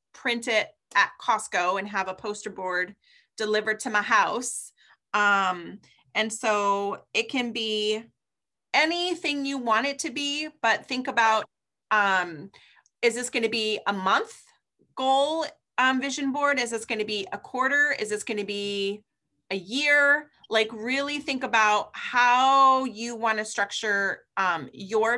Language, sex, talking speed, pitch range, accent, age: English, female, 145 wpm, 200-245 Hz, American, 30-49